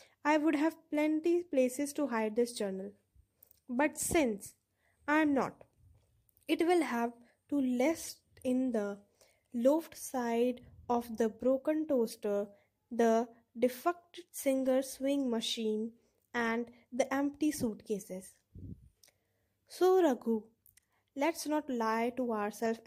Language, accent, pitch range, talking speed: English, Indian, 230-285 Hz, 115 wpm